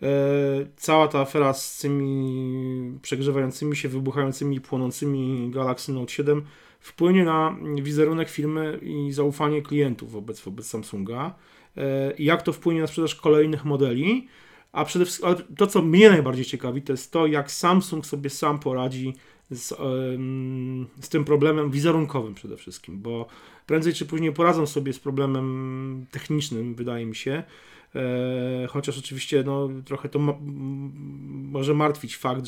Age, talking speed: 40-59, 135 wpm